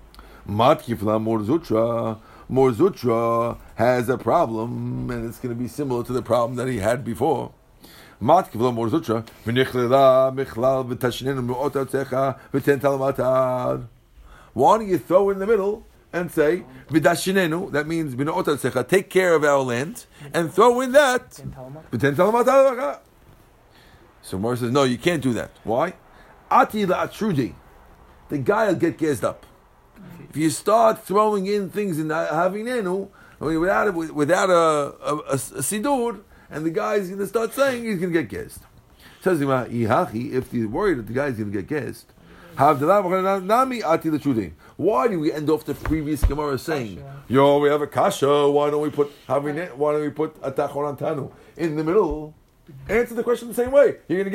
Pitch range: 125-175 Hz